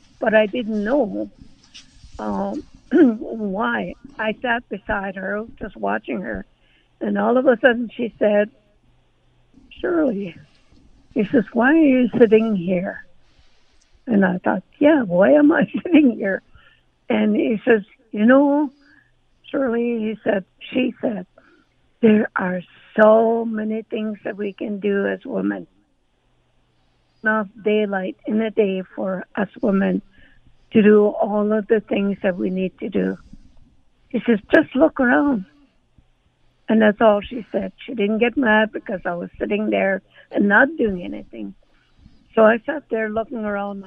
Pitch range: 195-240 Hz